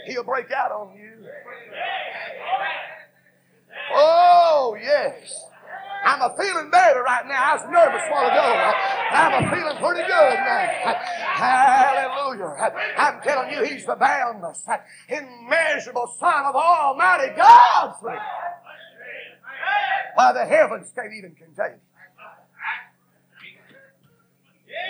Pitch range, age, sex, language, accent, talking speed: 220-360 Hz, 40-59, male, English, American, 110 wpm